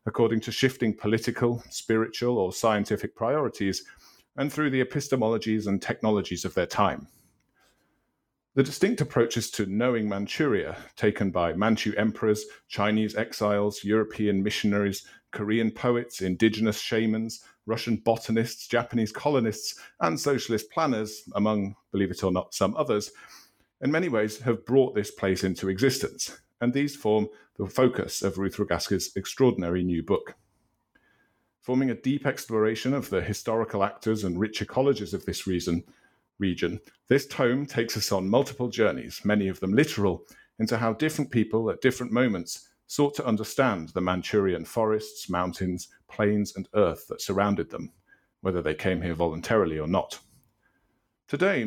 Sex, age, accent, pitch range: male, 40-59, British, 100-120 Hz